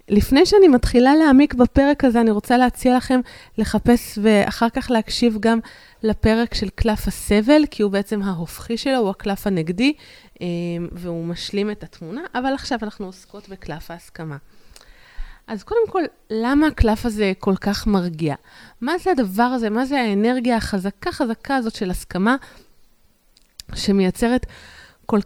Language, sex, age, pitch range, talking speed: Hebrew, female, 20-39, 195-260 Hz, 140 wpm